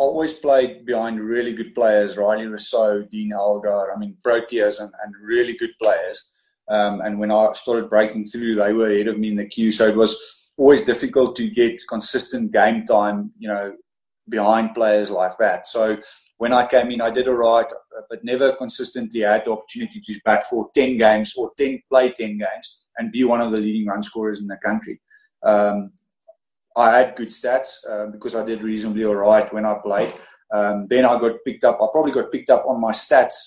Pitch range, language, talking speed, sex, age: 105-130 Hz, English, 205 wpm, male, 30-49